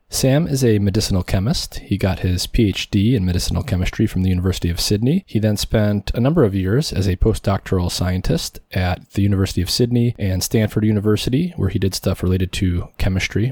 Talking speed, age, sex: 190 wpm, 20-39, male